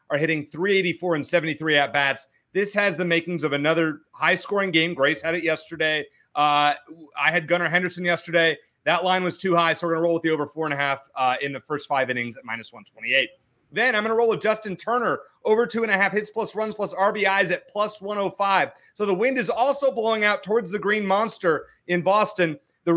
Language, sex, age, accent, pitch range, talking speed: English, male, 30-49, American, 155-200 Hz, 205 wpm